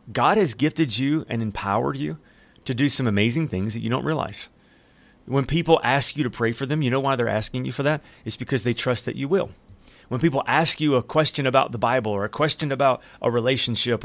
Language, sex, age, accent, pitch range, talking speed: English, male, 30-49, American, 110-145 Hz, 230 wpm